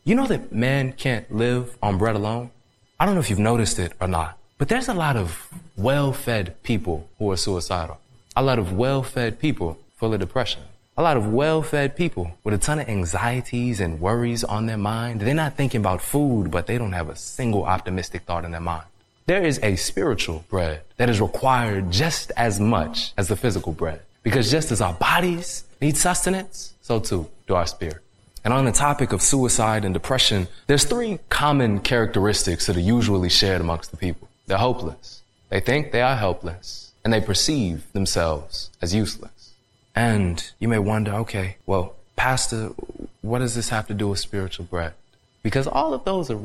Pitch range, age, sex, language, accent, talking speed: 95-130 Hz, 20-39, male, English, American, 190 wpm